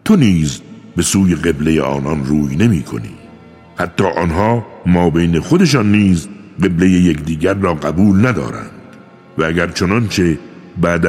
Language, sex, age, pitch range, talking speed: Persian, male, 60-79, 80-115 Hz, 135 wpm